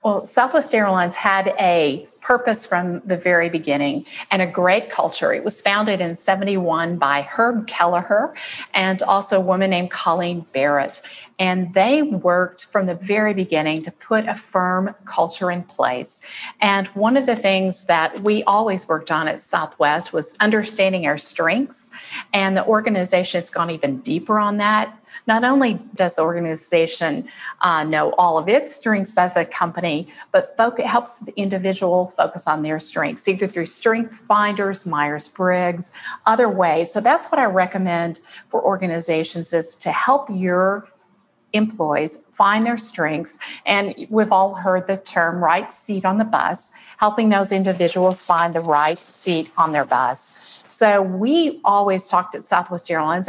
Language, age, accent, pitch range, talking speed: English, 40-59, American, 170-215 Hz, 160 wpm